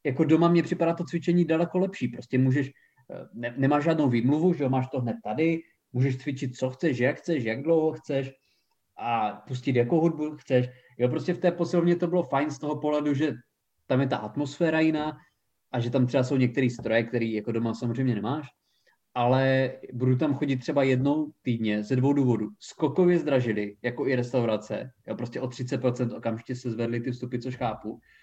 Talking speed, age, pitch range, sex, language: 190 wpm, 20-39, 125-145 Hz, male, Czech